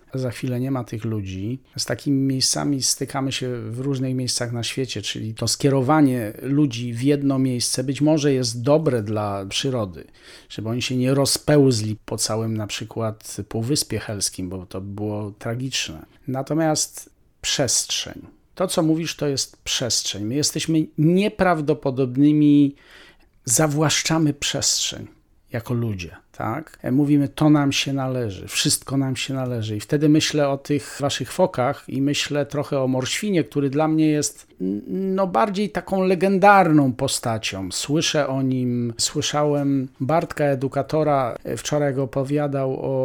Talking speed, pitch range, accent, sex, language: 140 wpm, 120-150 Hz, native, male, Polish